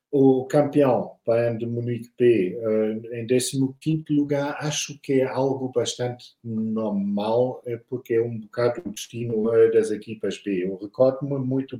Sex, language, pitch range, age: male, Portuguese, 115-130 Hz, 50-69